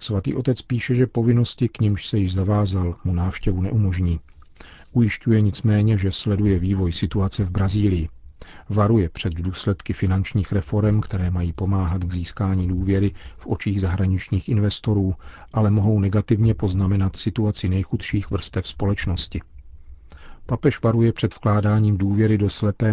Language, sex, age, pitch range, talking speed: Czech, male, 40-59, 90-105 Hz, 135 wpm